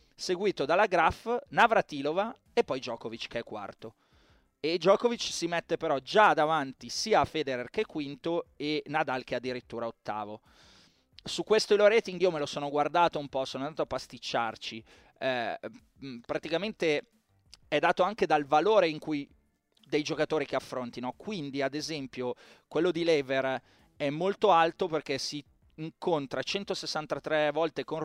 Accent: native